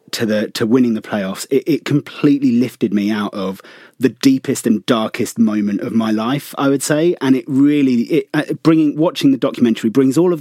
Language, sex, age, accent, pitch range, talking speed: English, male, 30-49, British, 110-145 Hz, 210 wpm